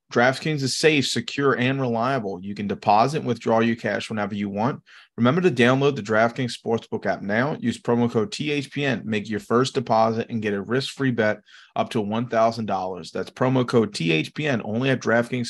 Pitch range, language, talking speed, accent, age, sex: 105-125 Hz, English, 180 wpm, American, 30-49, male